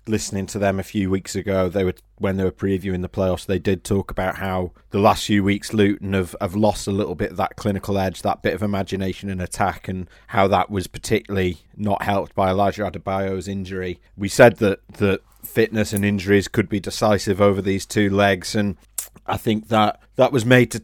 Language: English